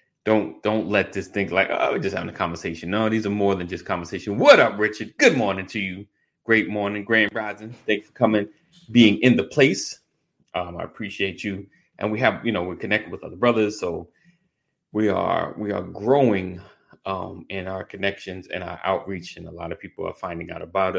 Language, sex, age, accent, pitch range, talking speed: English, male, 30-49, American, 95-140 Hz, 210 wpm